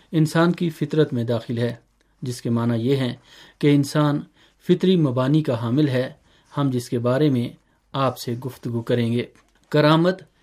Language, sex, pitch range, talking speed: Urdu, male, 130-160 Hz, 165 wpm